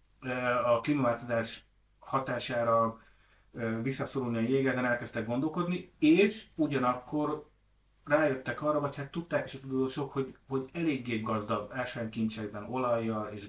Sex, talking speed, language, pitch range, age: male, 115 wpm, Hungarian, 115-135 Hz, 30-49